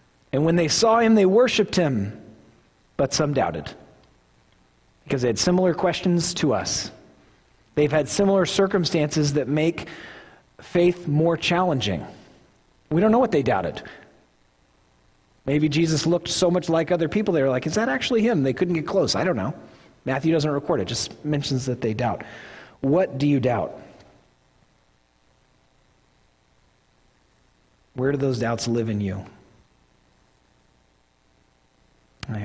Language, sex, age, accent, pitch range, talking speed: English, male, 40-59, American, 105-165 Hz, 140 wpm